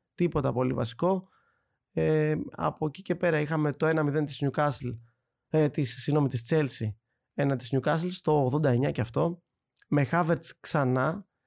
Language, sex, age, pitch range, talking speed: Greek, male, 20-39, 130-170 Hz, 135 wpm